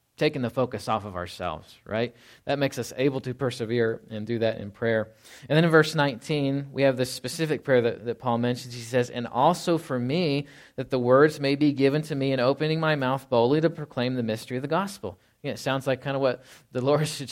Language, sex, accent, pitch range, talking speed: English, male, American, 115-140 Hz, 230 wpm